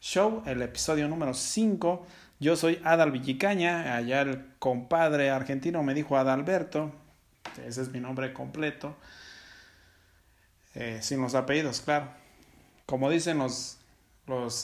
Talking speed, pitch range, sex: 125 wpm, 130-180 Hz, male